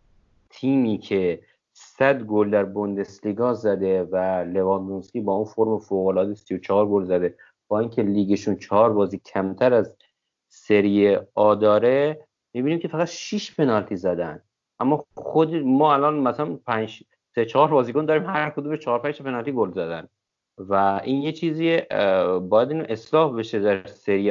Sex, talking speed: male, 140 wpm